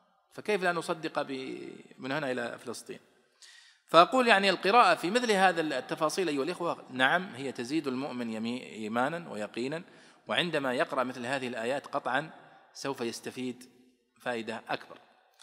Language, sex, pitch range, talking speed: Arabic, male, 135-190 Hz, 125 wpm